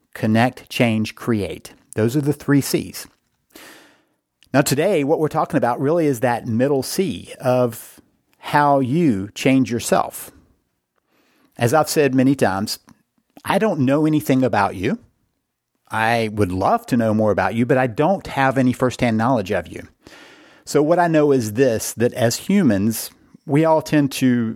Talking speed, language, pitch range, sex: 160 wpm, English, 110-140 Hz, male